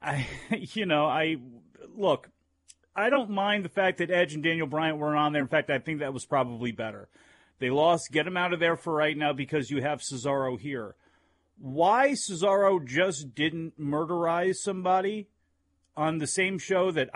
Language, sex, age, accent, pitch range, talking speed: English, male, 40-59, American, 140-215 Hz, 180 wpm